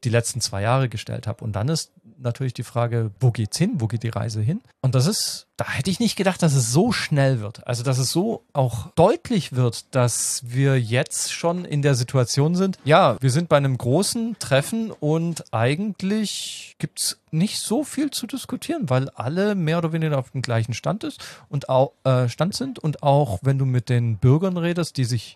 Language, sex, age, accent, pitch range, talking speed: German, male, 40-59, German, 120-165 Hz, 205 wpm